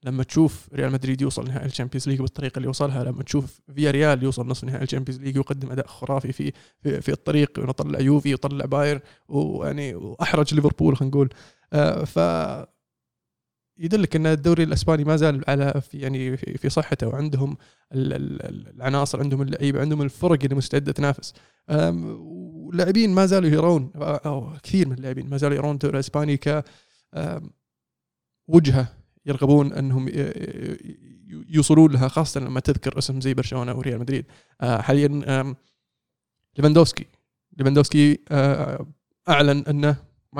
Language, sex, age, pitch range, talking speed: Arabic, male, 20-39, 135-155 Hz, 135 wpm